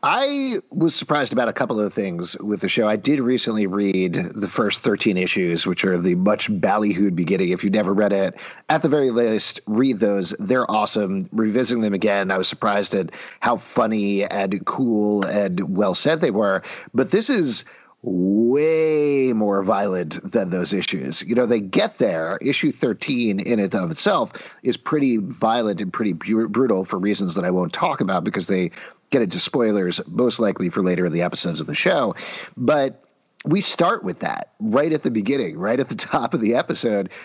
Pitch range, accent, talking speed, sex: 100-140 Hz, American, 190 wpm, male